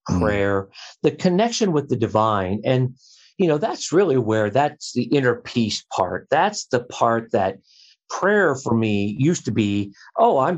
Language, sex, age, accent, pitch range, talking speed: English, male, 50-69, American, 110-140 Hz, 165 wpm